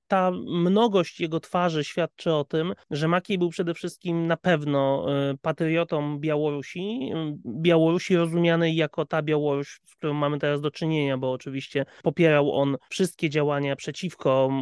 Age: 30-49